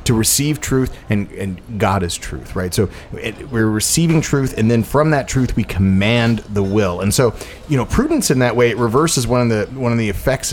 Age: 30-49